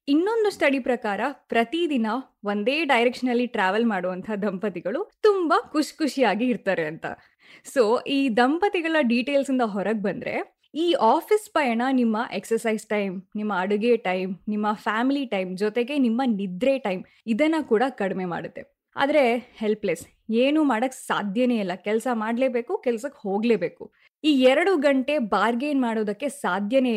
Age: 20-39